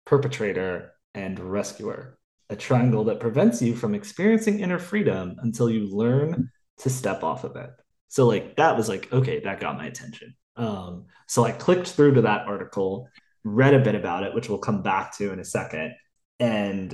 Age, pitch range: 20-39, 105-150 Hz